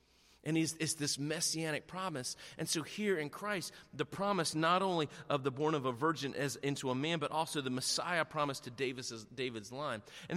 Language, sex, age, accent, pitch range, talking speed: English, male, 30-49, American, 140-185 Hz, 205 wpm